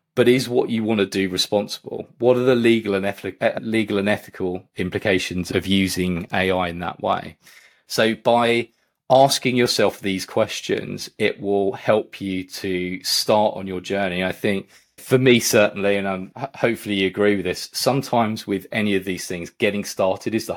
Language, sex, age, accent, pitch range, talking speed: English, male, 30-49, British, 95-110 Hz, 170 wpm